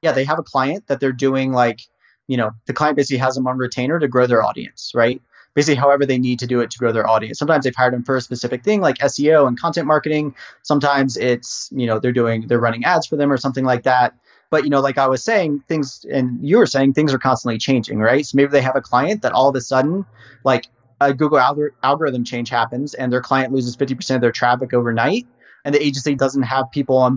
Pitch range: 125-145 Hz